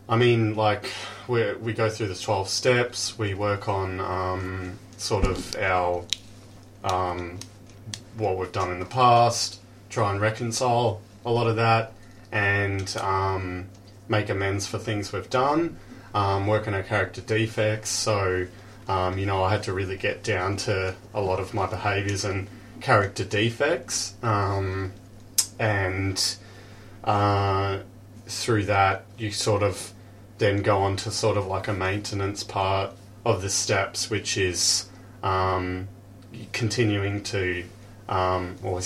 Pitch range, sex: 95-110 Hz, male